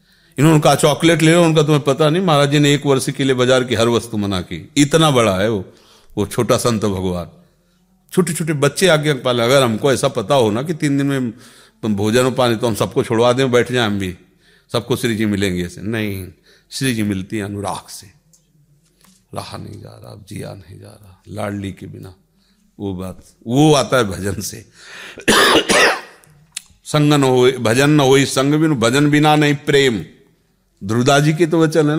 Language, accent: Hindi, native